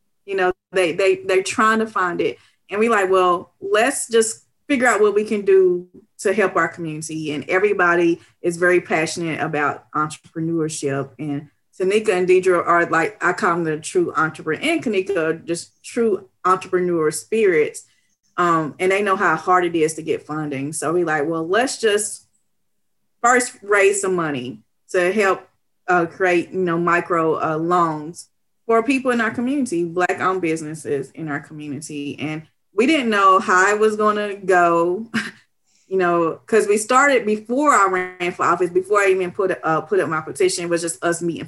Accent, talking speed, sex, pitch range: American, 180 wpm, female, 160-195 Hz